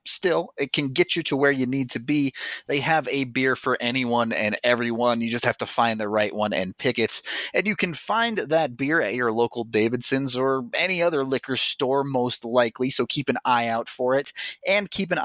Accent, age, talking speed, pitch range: American, 30-49, 225 wpm, 115-140 Hz